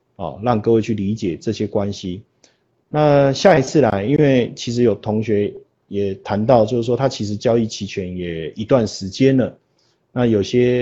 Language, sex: Chinese, male